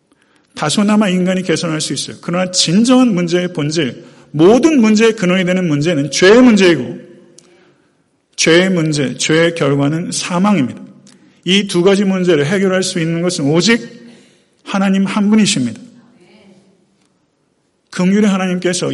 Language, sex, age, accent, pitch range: Korean, male, 40-59, native, 175-230 Hz